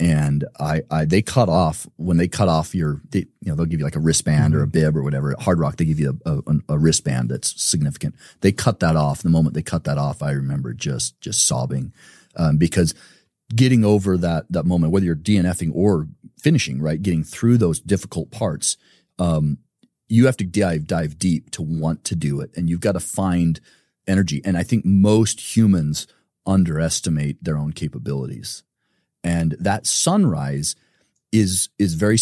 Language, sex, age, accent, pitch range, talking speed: English, male, 40-59, American, 80-100 Hz, 185 wpm